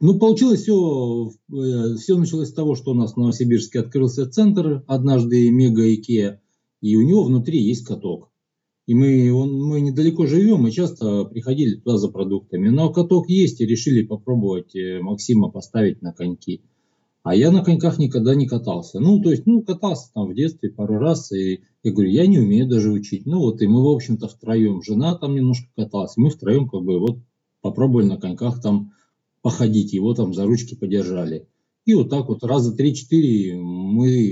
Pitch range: 105-145 Hz